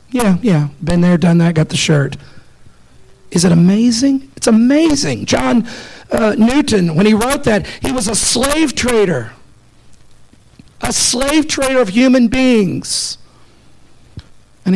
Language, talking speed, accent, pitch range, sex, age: English, 135 wpm, American, 145-205 Hz, male, 50-69